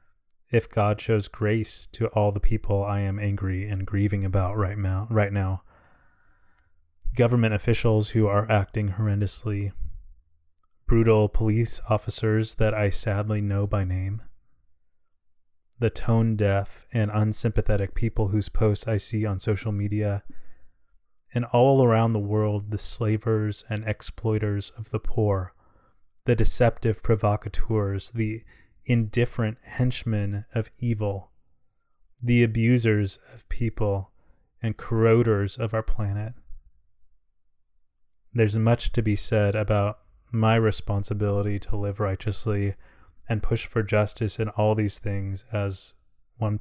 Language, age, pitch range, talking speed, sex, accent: English, 20-39, 100-110 Hz, 120 wpm, male, American